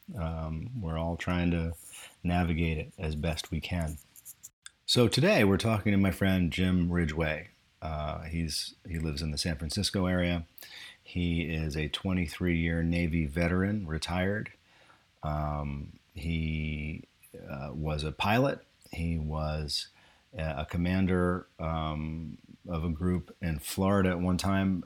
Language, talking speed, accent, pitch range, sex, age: English, 135 wpm, American, 85-95 Hz, male, 40-59